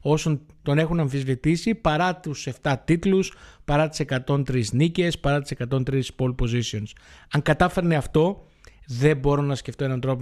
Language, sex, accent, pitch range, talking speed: Greek, male, native, 115-155 Hz, 155 wpm